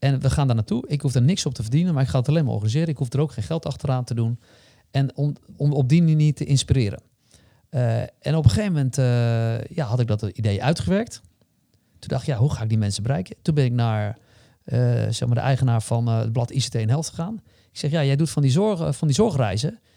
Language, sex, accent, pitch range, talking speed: Dutch, male, Dutch, 125-170 Hz, 250 wpm